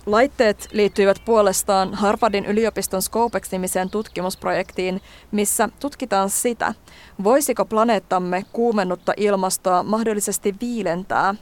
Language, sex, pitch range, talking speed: Finnish, female, 185-220 Hz, 85 wpm